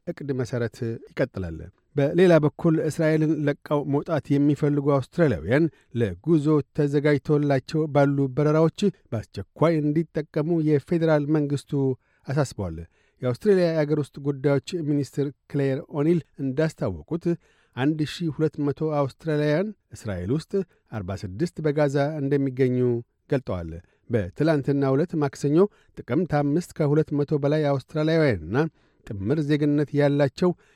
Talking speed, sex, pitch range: 90 wpm, male, 135-155 Hz